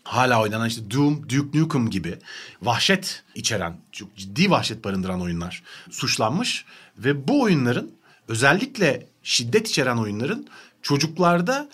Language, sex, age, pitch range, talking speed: Turkish, male, 40-59, 130-200 Hz, 120 wpm